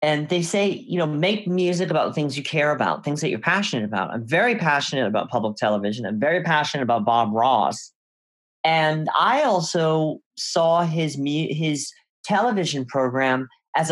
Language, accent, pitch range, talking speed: English, American, 125-160 Hz, 165 wpm